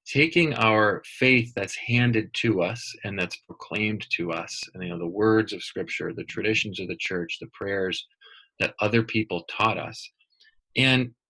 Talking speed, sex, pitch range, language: 170 wpm, male, 95-120 Hz, English